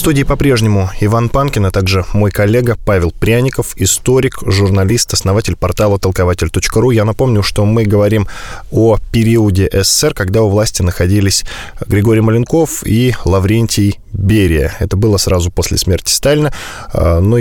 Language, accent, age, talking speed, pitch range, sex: Russian, native, 20-39, 140 wpm, 95-115 Hz, male